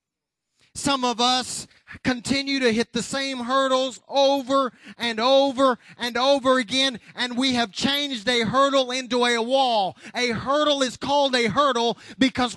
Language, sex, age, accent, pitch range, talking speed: English, male, 30-49, American, 225-270 Hz, 150 wpm